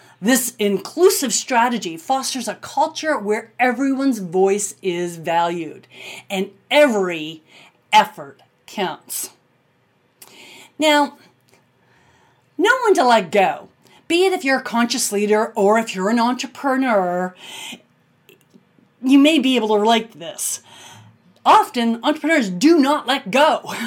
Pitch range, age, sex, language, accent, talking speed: 200-290 Hz, 40-59, female, English, American, 115 wpm